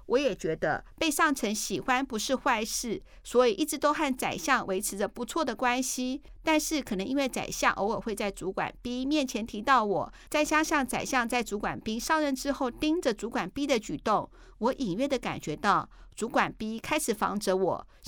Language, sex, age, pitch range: Chinese, female, 50-69, 205-280 Hz